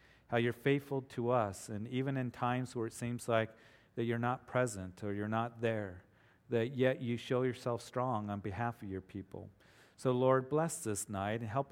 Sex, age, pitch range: male, 40-59, 110-130 Hz